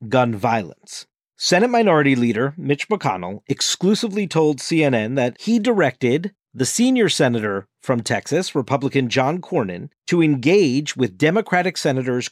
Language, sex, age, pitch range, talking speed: English, male, 40-59, 125-170 Hz, 125 wpm